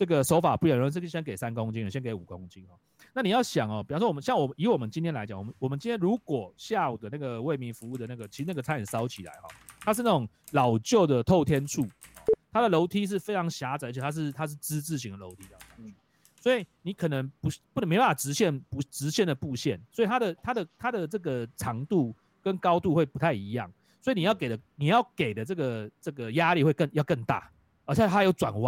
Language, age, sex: English, 30-49, male